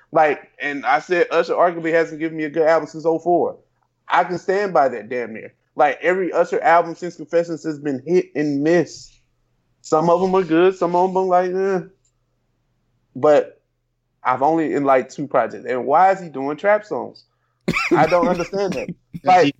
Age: 20-39